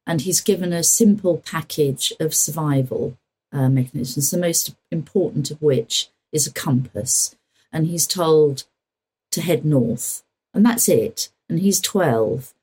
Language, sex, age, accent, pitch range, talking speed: English, female, 50-69, British, 140-170 Hz, 145 wpm